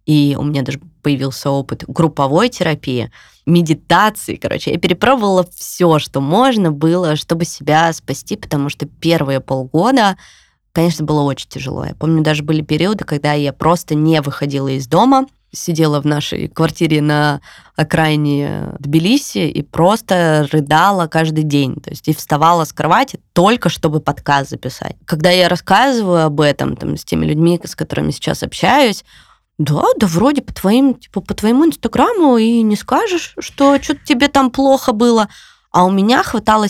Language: Russian